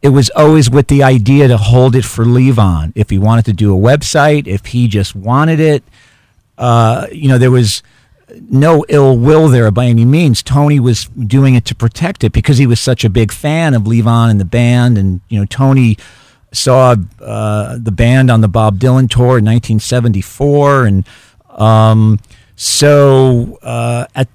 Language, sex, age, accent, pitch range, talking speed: English, male, 50-69, American, 110-135 Hz, 180 wpm